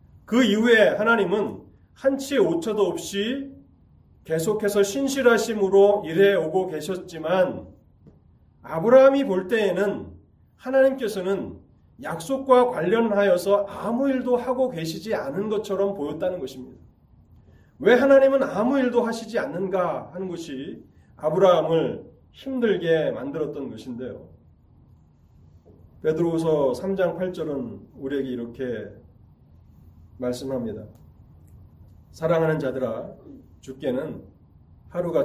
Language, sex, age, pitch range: Korean, male, 30-49, 125-210 Hz